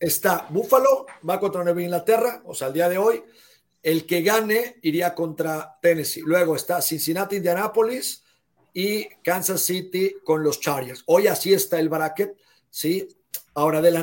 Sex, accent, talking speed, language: male, Mexican, 160 wpm, Spanish